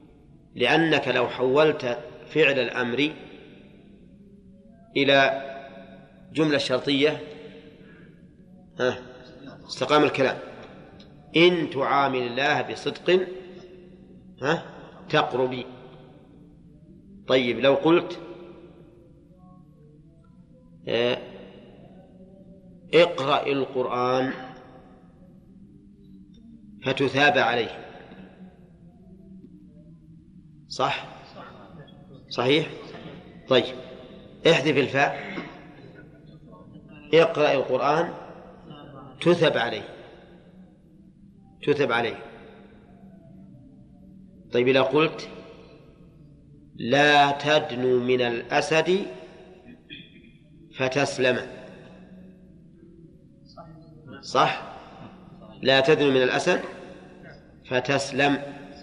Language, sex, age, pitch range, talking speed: Arabic, male, 40-59, 135-175 Hz, 50 wpm